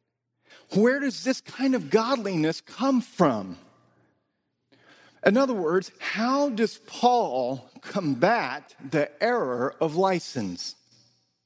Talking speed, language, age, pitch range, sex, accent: 100 wpm, English, 50-69, 155-220 Hz, male, American